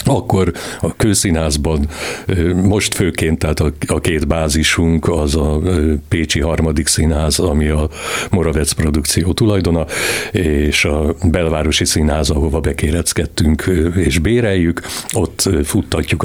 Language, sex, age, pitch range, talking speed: Hungarian, male, 60-79, 80-95 Hz, 105 wpm